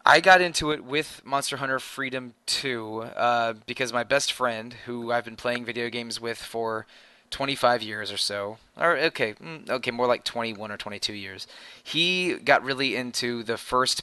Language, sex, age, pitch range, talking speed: English, male, 20-39, 110-130 Hz, 175 wpm